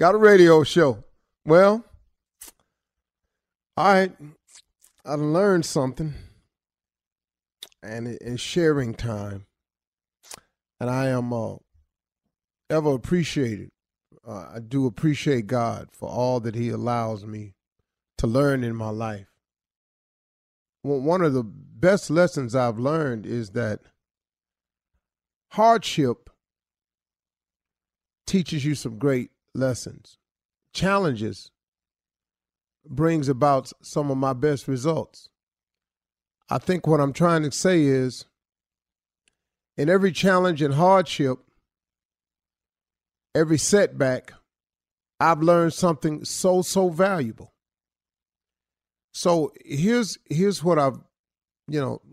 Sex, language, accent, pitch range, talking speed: male, English, American, 115-165 Hz, 100 wpm